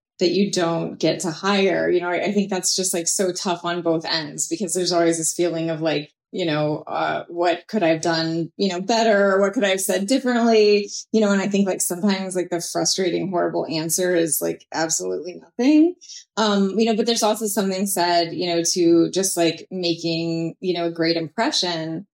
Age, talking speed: 20-39, 215 wpm